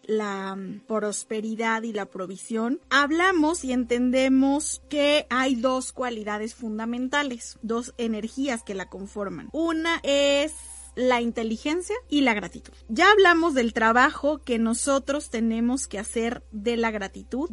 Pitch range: 215-270 Hz